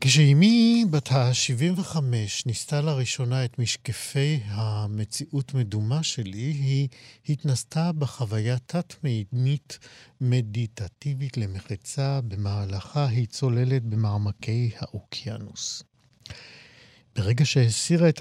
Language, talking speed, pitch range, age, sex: Hebrew, 80 wpm, 110-140 Hz, 50-69, male